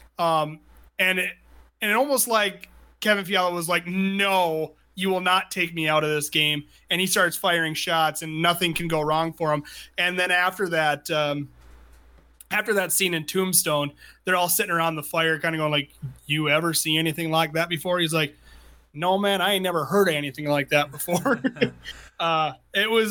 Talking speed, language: 190 wpm, English